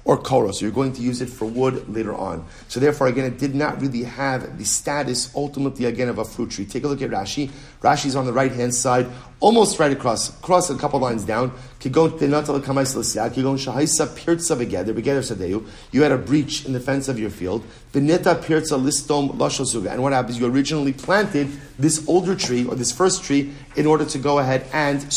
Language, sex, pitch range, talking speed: English, male, 125-155 Hz, 180 wpm